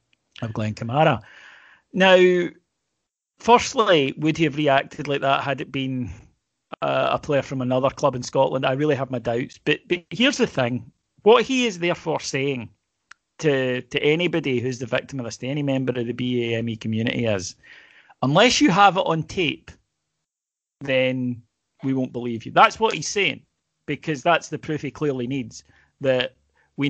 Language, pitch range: English, 130-165 Hz